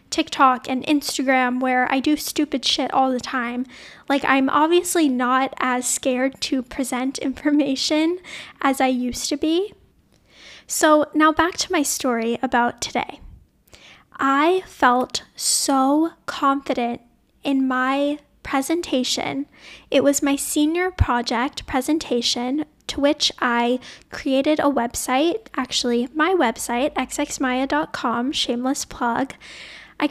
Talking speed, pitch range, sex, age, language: 120 wpm, 255-300 Hz, female, 10-29, English